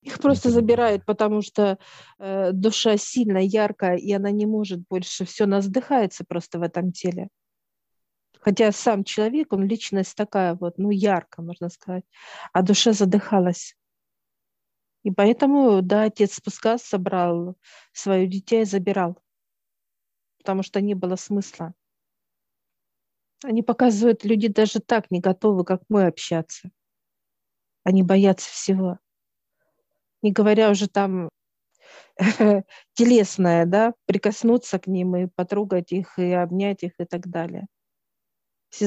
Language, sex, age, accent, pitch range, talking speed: Russian, female, 40-59, native, 185-215 Hz, 125 wpm